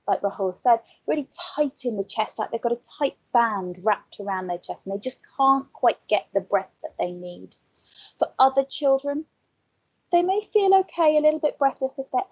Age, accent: 30-49, British